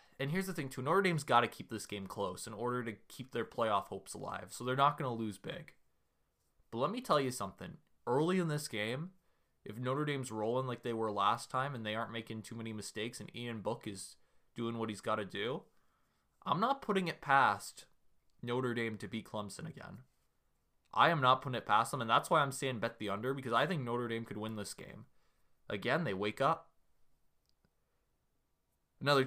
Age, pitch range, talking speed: 20-39, 105-130 Hz, 215 wpm